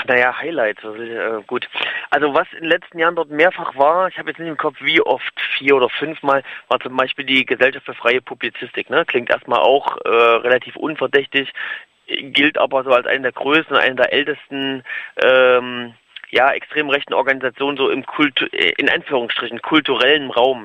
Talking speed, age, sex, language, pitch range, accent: 180 wpm, 30-49, male, German, 125-150 Hz, German